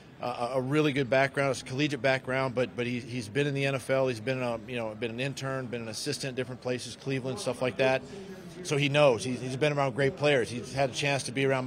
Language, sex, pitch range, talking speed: English, male, 125-145 Hz, 250 wpm